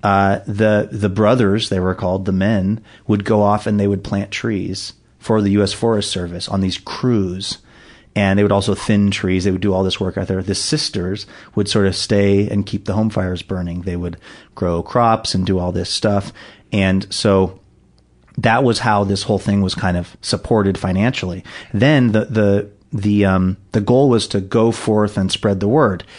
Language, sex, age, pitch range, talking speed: English, male, 30-49, 95-110 Hz, 200 wpm